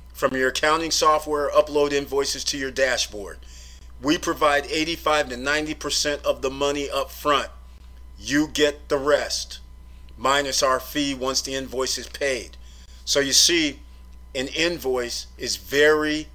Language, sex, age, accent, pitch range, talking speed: English, male, 40-59, American, 105-145 Hz, 145 wpm